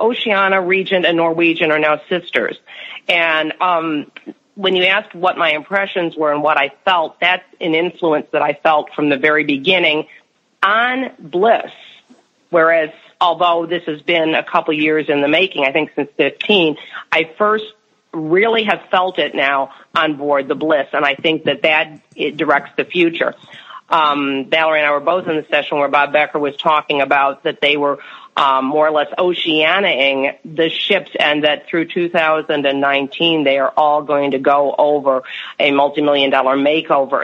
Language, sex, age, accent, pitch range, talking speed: English, female, 40-59, American, 145-175 Hz, 170 wpm